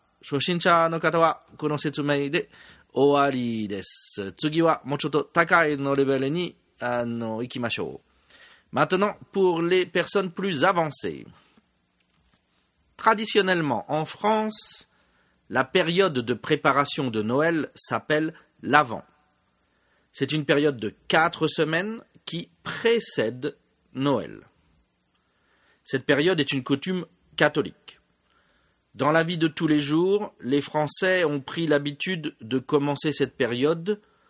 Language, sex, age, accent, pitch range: Japanese, male, 40-59, French, 135-180 Hz